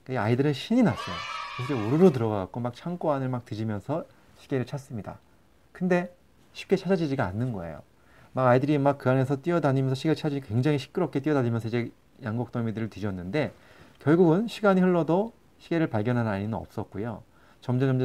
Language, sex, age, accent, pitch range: Korean, male, 40-59, native, 105-155 Hz